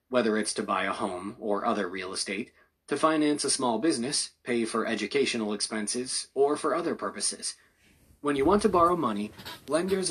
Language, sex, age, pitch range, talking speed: English, male, 30-49, 105-135 Hz, 180 wpm